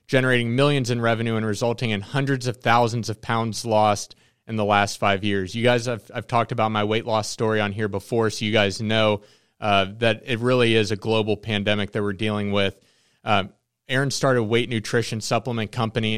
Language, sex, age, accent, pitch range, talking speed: English, male, 30-49, American, 110-125 Hz, 200 wpm